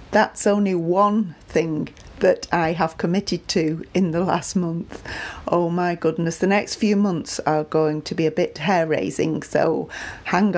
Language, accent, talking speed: English, British, 165 wpm